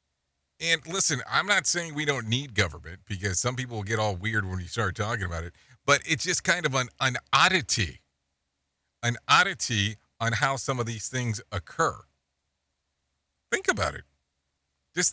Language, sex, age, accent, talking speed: English, male, 40-59, American, 165 wpm